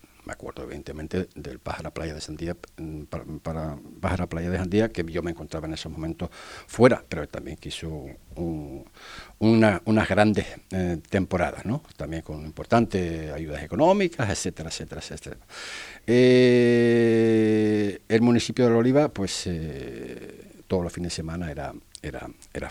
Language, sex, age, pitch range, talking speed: Spanish, male, 50-69, 80-95 Hz, 150 wpm